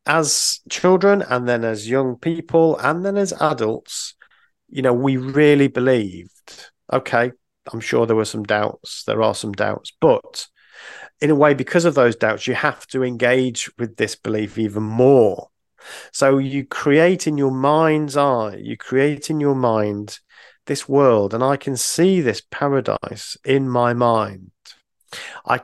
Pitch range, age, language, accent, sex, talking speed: 115-140 Hz, 40-59, English, British, male, 160 wpm